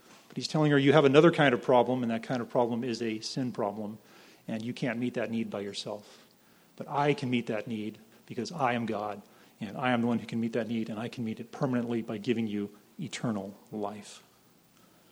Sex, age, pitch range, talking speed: male, 40-59, 115-145 Hz, 230 wpm